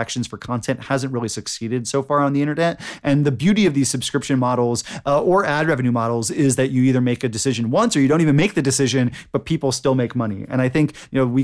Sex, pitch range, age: male, 125-155 Hz, 20-39